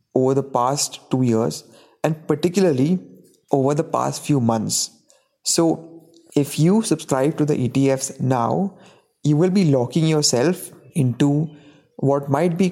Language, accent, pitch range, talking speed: English, Indian, 135-170 Hz, 135 wpm